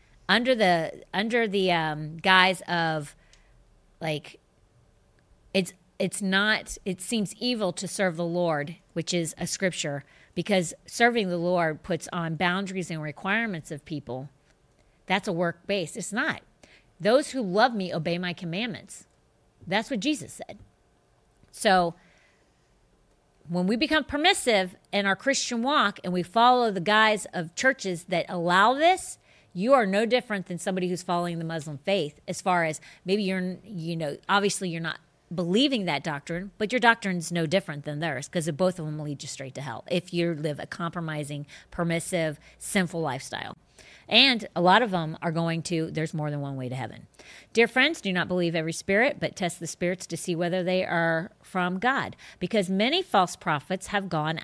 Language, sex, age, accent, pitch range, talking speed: English, female, 40-59, American, 160-200 Hz, 175 wpm